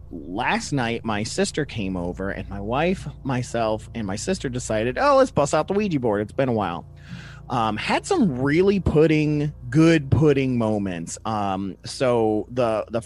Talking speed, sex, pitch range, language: 170 wpm, male, 110-155 Hz, English